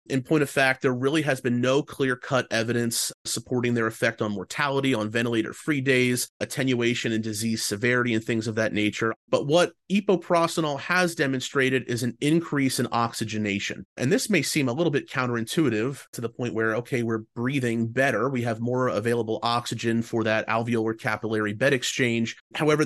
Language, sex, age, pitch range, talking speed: English, male, 30-49, 110-135 Hz, 170 wpm